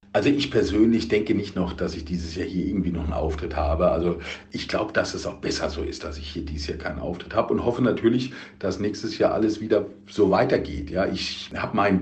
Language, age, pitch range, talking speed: German, 50-69, 90-100 Hz, 235 wpm